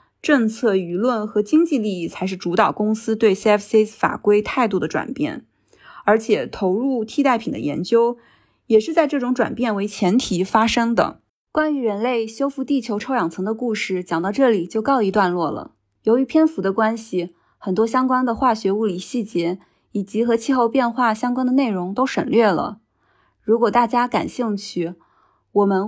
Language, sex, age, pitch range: Chinese, female, 20-39, 195-250 Hz